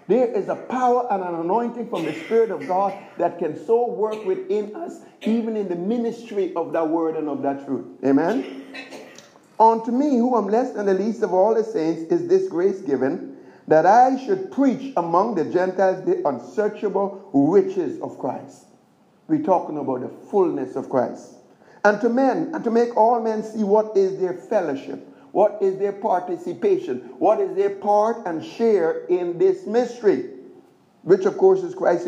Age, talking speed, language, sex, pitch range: 60-79, 180 wpm, English, male, 190-285 Hz